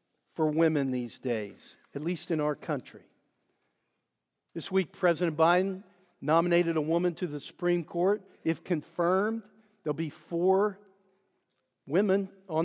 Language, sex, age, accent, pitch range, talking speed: English, male, 50-69, American, 155-195 Hz, 135 wpm